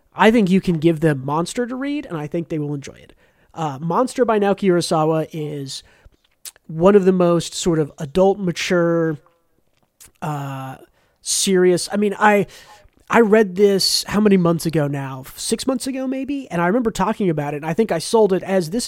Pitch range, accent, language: 160-205 Hz, American, English